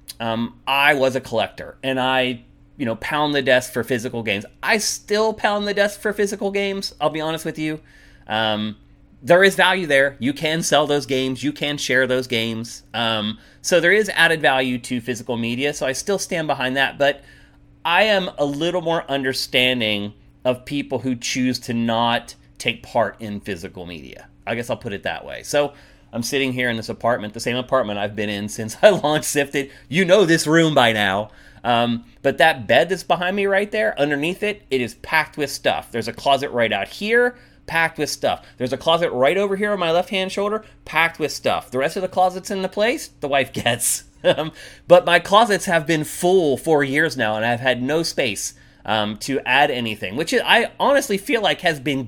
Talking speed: 205 wpm